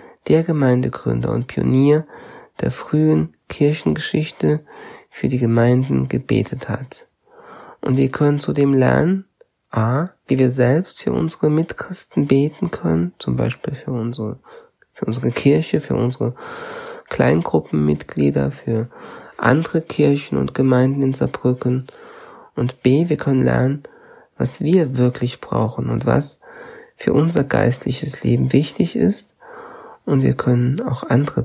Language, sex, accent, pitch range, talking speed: German, male, German, 115-155 Hz, 120 wpm